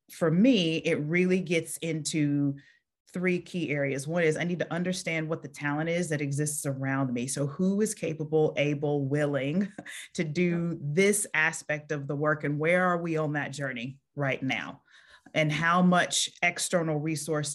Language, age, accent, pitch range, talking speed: English, 30-49, American, 145-170 Hz, 170 wpm